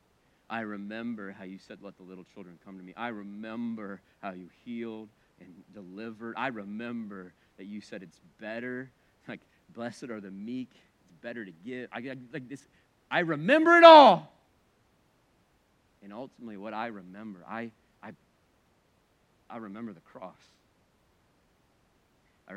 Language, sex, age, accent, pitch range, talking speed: English, male, 40-59, American, 95-120 Hz, 145 wpm